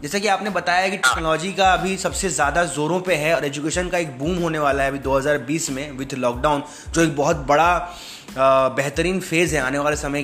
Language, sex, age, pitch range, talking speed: English, male, 20-39, 145-185 Hz, 215 wpm